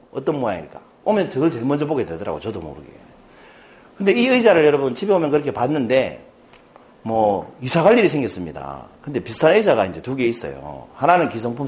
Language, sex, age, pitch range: Korean, male, 40-59, 120-200 Hz